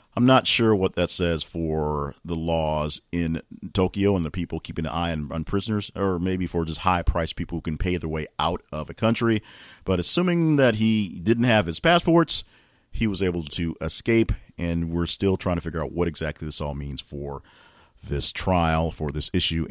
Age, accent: 40-59, American